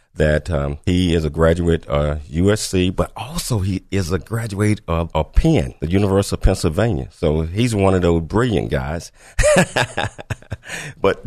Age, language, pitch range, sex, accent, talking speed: 50-69, English, 85-110 Hz, male, American, 160 wpm